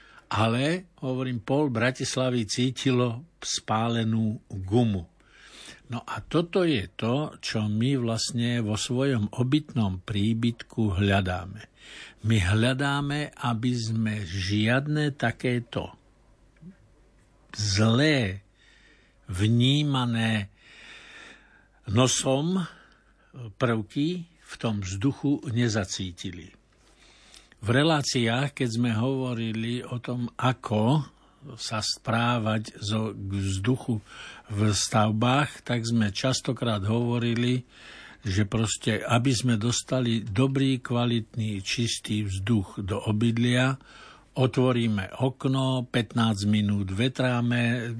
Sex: male